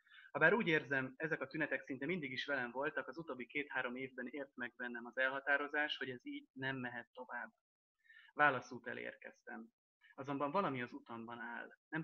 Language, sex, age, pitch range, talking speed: Hungarian, male, 30-49, 125-155 Hz, 170 wpm